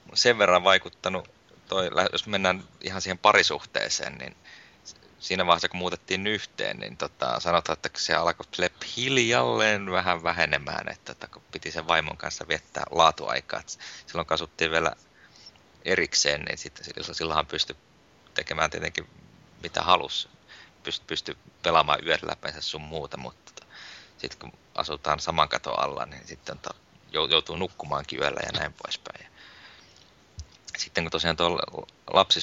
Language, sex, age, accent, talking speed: Finnish, male, 30-49, native, 130 wpm